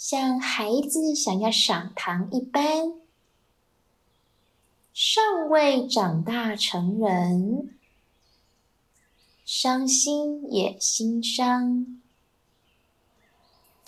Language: Chinese